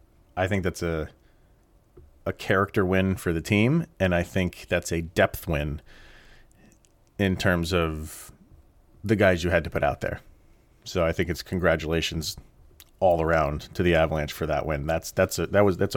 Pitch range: 85-100 Hz